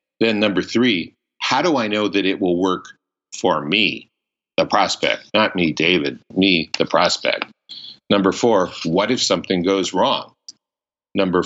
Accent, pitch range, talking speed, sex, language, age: American, 90-110 Hz, 150 wpm, male, English, 50-69